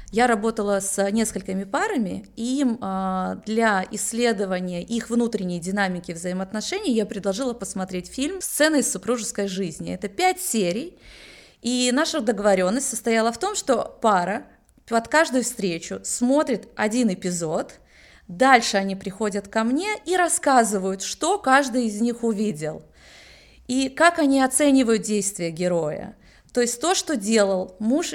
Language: Russian